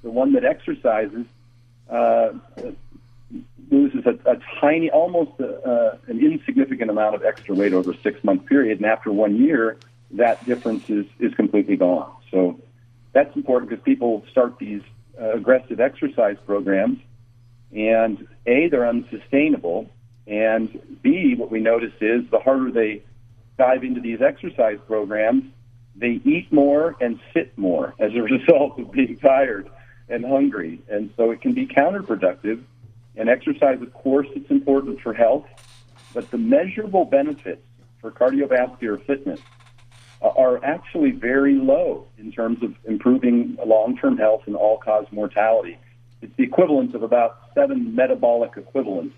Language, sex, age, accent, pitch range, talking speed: English, male, 50-69, American, 115-140 Hz, 140 wpm